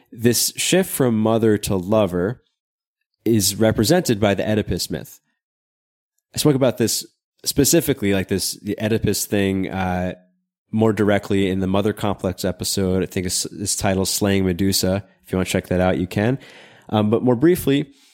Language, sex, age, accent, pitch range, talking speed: English, male, 20-39, American, 95-120 Hz, 165 wpm